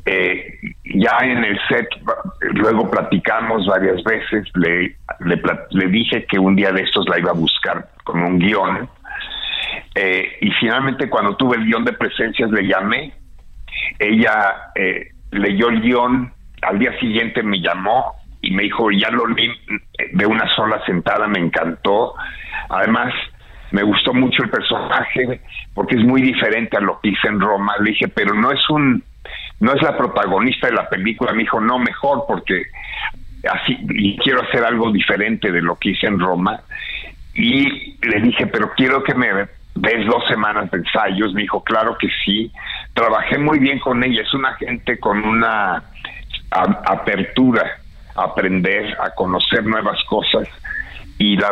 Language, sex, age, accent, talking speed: Spanish, male, 50-69, Mexican, 165 wpm